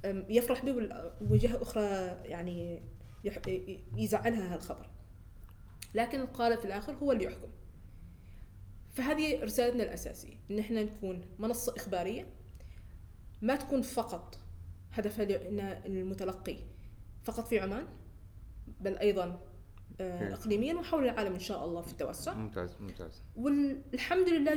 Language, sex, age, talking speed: Arabic, female, 20-39, 105 wpm